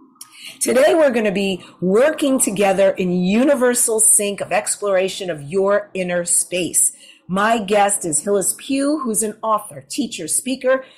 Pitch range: 175-230 Hz